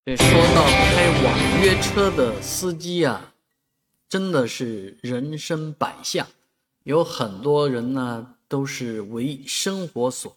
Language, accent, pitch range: Chinese, native, 110-135 Hz